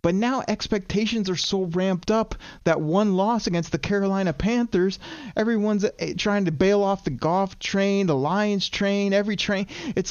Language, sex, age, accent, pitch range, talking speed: English, male, 30-49, American, 150-200 Hz, 165 wpm